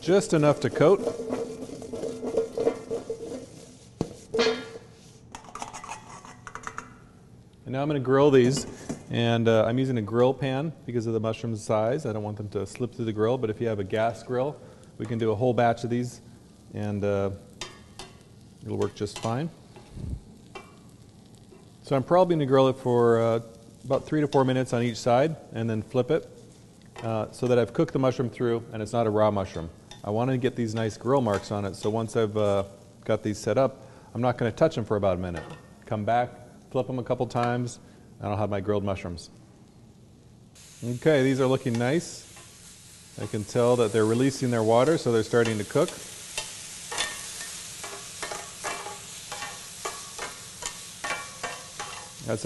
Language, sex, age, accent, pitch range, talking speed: English, male, 40-59, American, 110-135 Hz, 170 wpm